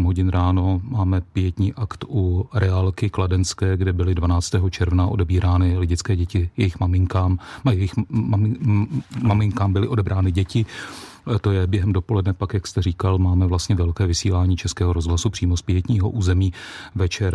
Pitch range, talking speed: 90-100 Hz, 140 wpm